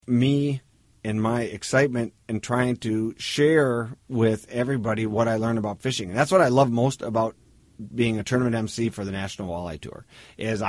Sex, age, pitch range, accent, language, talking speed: male, 50-69, 105-125 Hz, American, English, 175 wpm